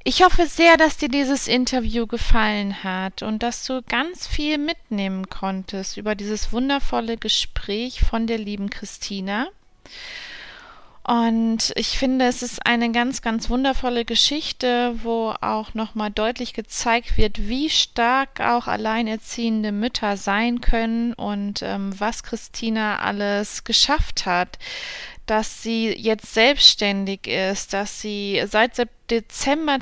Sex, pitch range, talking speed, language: female, 205-240 Hz, 125 wpm, German